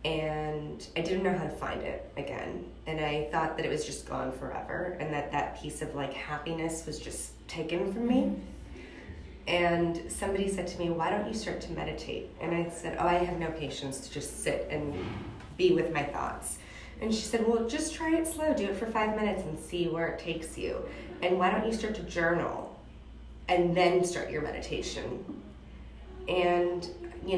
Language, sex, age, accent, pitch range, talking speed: English, female, 20-39, American, 155-185 Hz, 195 wpm